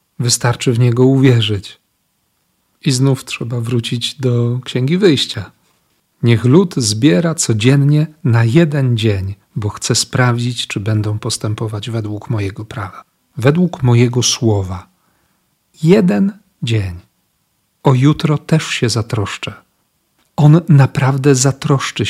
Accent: native